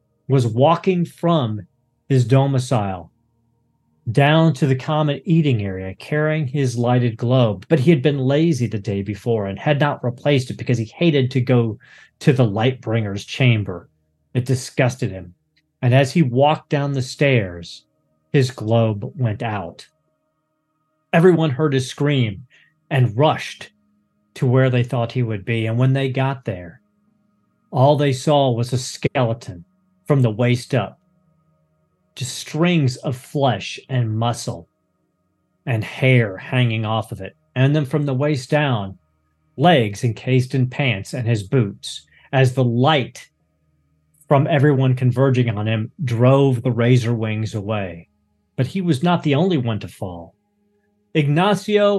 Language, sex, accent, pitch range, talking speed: English, male, American, 110-150 Hz, 150 wpm